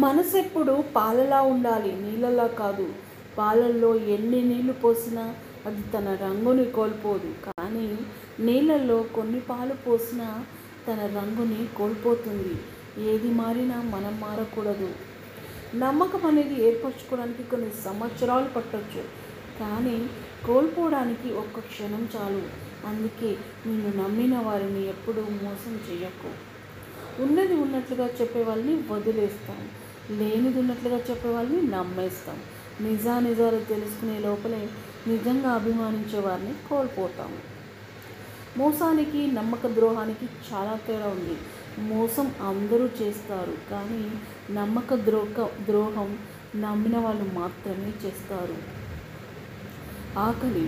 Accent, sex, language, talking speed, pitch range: native, female, Telugu, 90 wpm, 205-245 Hz